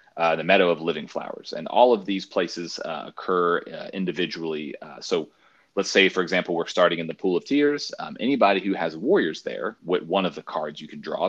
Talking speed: 220 wpm